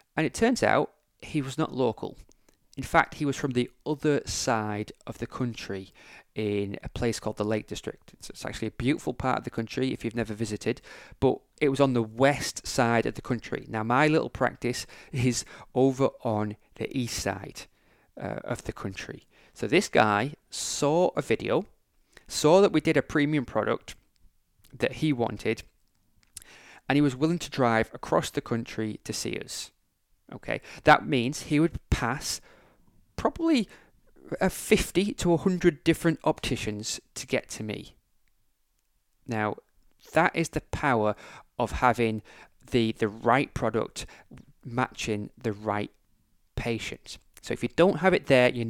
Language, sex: English, male